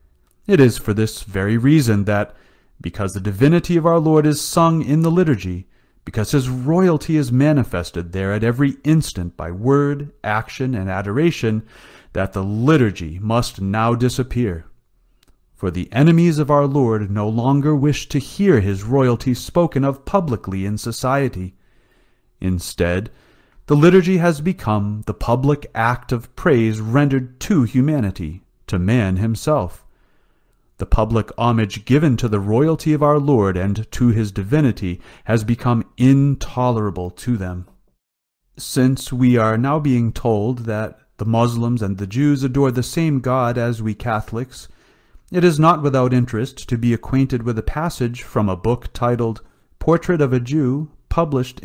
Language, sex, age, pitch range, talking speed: English, male, 40-59, 105-140 Hz, 150 wpm